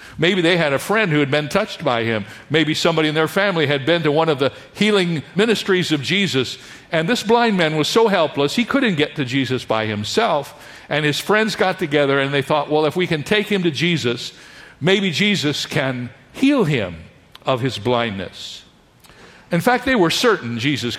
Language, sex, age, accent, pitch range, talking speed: English, male, 50-69, American, 140-200 Hz, 200 wpm